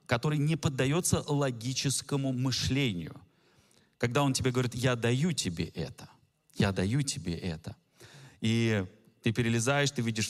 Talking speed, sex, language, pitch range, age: 130 wpm, male, Russian, 100-140 Hz, 30-49